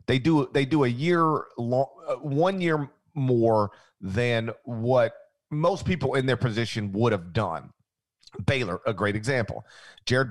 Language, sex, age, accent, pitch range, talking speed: English, male, 40-59, American, 110-135 Hz, 145 wpm